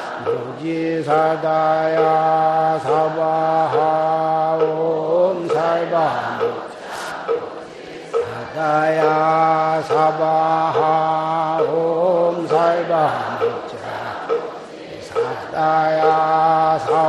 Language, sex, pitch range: Korean, male, 160-175 Hz